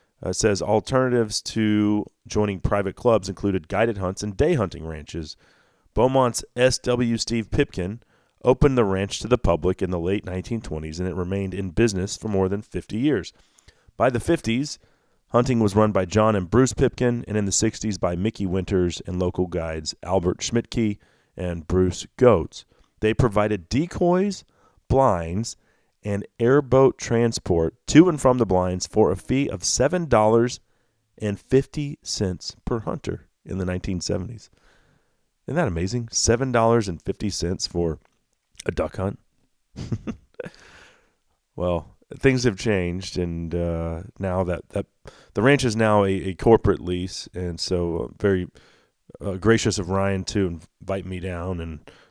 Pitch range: 90-115 Hz